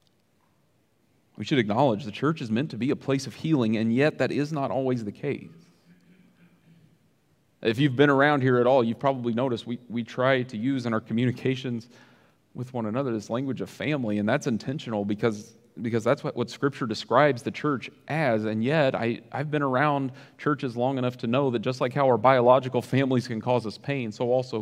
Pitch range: 115-140 Hz